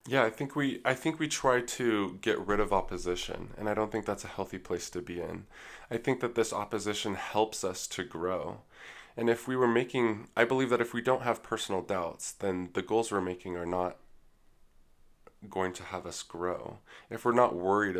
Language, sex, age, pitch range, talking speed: English, male, 20-39, 90-105 Hz, 210 wpm